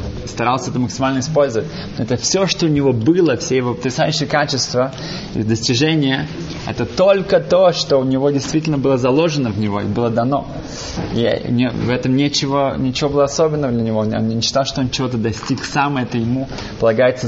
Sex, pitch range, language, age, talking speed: male, 110-140 Hz, Russian, 20-39, 175 wpm